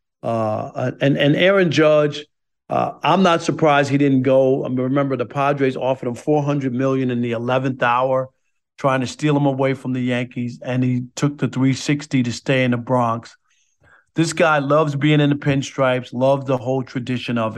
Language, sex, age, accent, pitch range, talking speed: English, male, 50-69, American, 125-145 Hz, 185 wpm